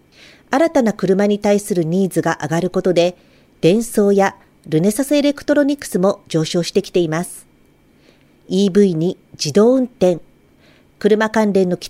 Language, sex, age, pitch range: Japanese, female, 50-69, 175-225 Hz